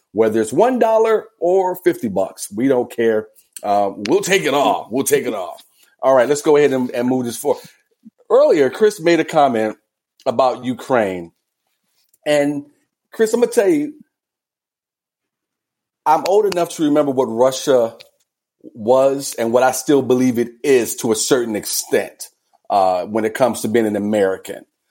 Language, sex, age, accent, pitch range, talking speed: English, male, 40-59, American, 115-150 Hz, 165 wpm